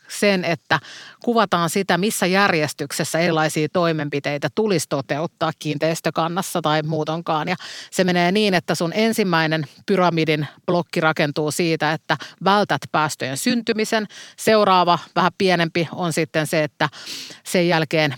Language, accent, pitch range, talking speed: Finnish, native, 150-175 Hz, 120 wpm